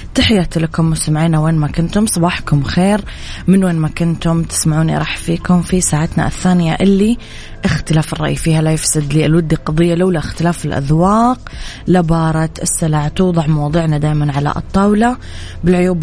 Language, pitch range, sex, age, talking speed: Arabic, 155-180 Hz, female, 20-39, 140 wpm